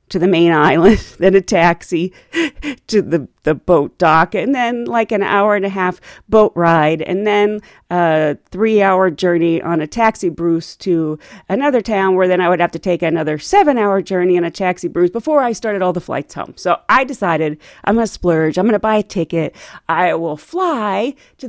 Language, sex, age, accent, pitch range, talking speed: English, female, 40-59, American, 175-270 Hz, 195 wpm